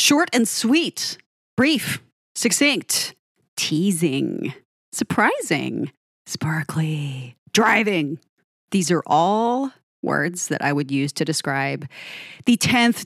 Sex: female